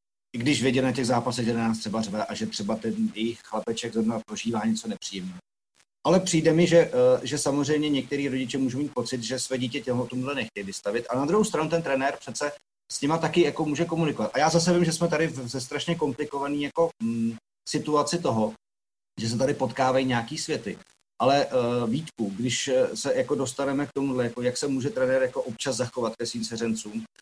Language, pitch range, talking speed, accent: Czech, 125-150 Hz, 195 wpm, native